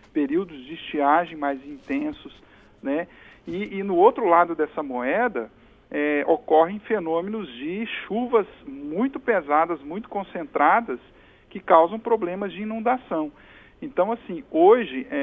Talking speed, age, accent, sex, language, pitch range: 115 wpm, 50-69, Brazilian, male, Portuguese, 165-240 Hz